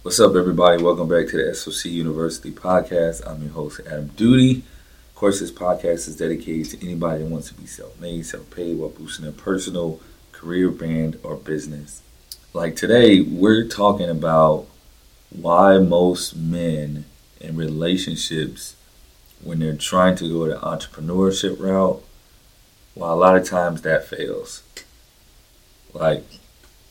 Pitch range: 80-90 Hz